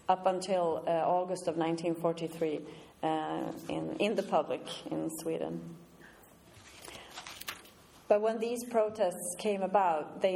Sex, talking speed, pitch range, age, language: female, 115 wpm, 160-185 Hz, 30-49, English